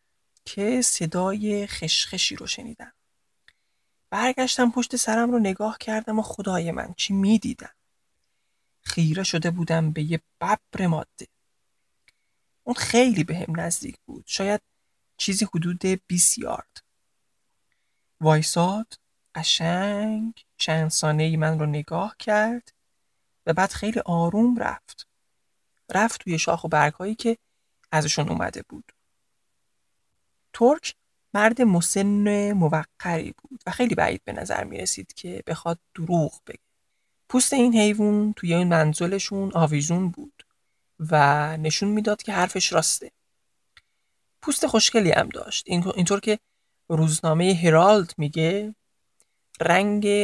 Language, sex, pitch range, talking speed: Persian, male, 160-220 Hz, 115 wpm